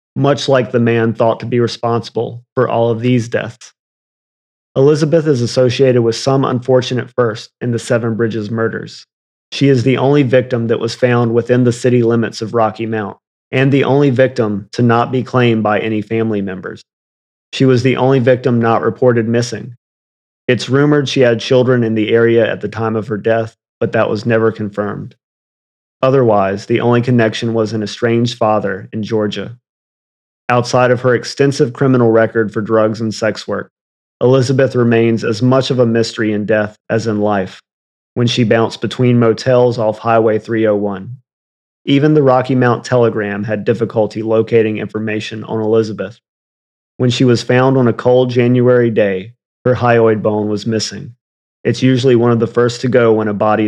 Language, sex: English, male